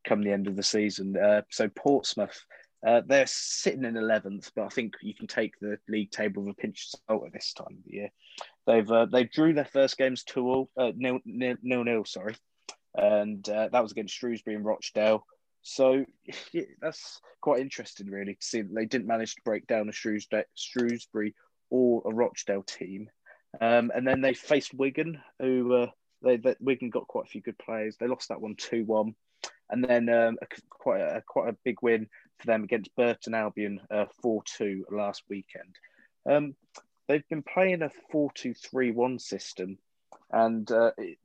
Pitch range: 105-125 Hz